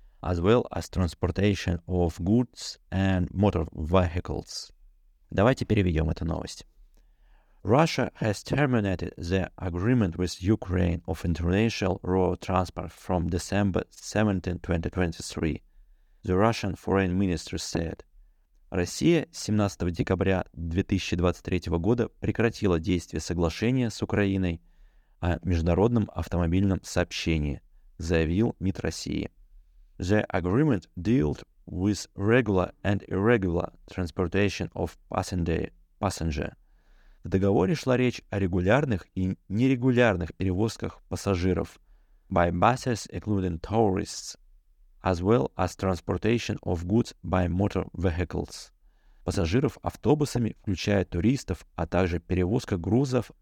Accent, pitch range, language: native, 85-105 Hz, Russian